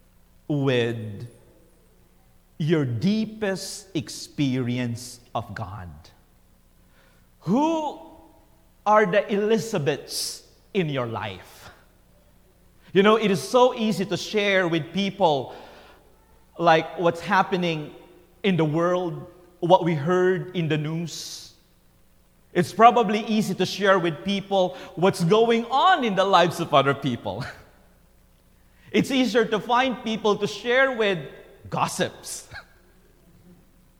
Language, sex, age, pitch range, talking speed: English, male, 40-59, 120-195 Hz, 105 wpm